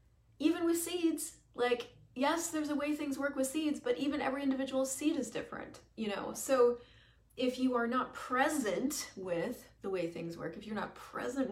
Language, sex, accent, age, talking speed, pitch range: English, female, American, 30-49, 190 wpm, 215-285 Hz